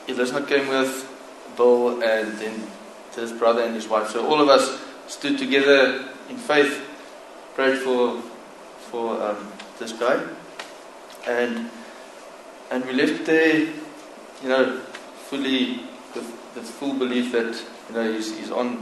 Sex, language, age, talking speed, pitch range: male, English, 20-39, 145 wpm, 115-135 Hz